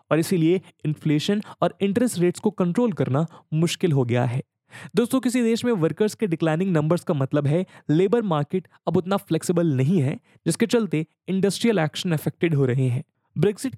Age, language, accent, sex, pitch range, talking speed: 20-39, English, Indian, male, 150-205 Hz, 175 wpm